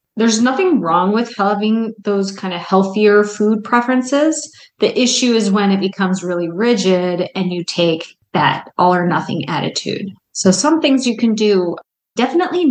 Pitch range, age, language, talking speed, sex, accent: 180-230 Hz, 20-39, English, 160 wpm, female, American